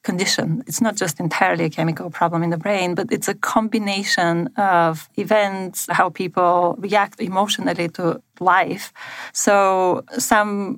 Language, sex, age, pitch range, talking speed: English, female, 30-49, 170-205 Hz, 140 wpm